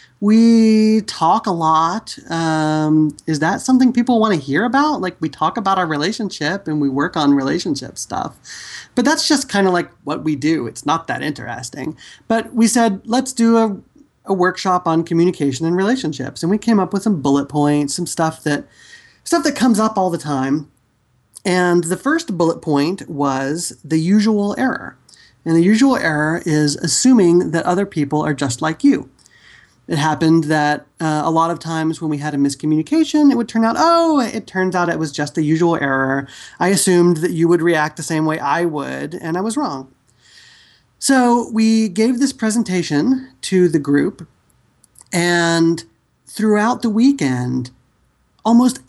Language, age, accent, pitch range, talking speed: English, 30-49, American, 155-225 Hz, 175 wpm